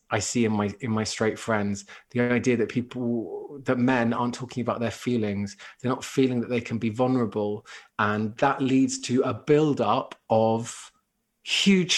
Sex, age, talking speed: male, 20-39, 175 wpm